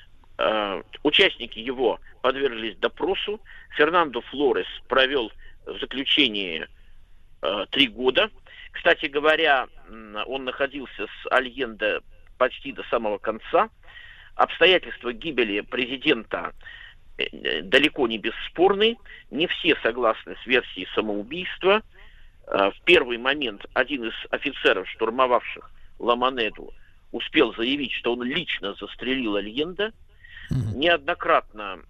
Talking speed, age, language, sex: 95 wpm, 50-69, Russian, male